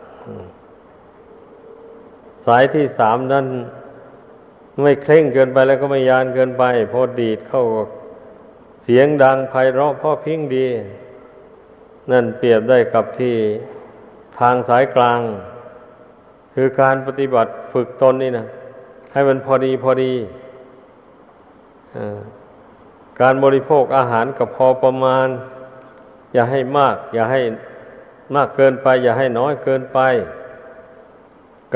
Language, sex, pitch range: Thai, male, 125-135 Hz